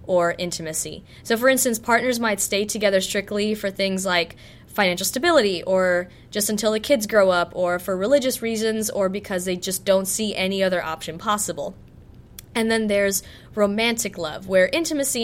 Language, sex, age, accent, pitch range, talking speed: English, female, 20-39, American, 180-220 Hz, 170 wpm